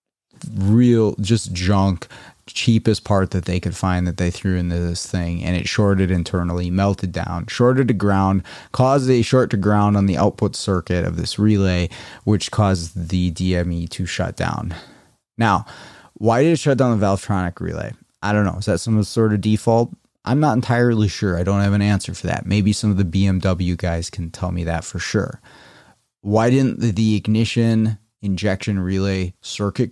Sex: male